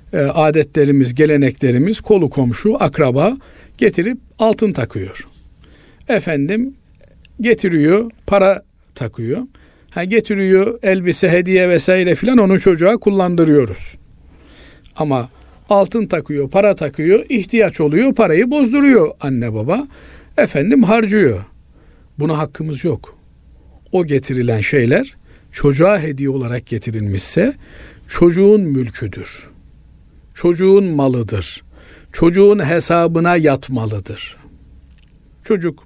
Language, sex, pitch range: Turkish, male, 130-205 Hz